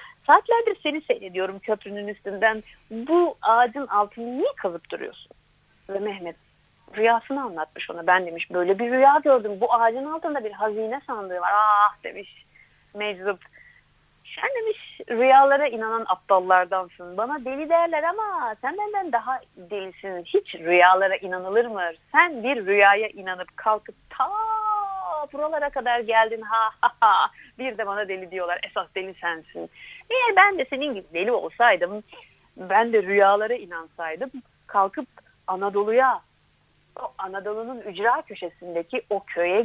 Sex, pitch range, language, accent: female, 190-275 Hz, Turkish, native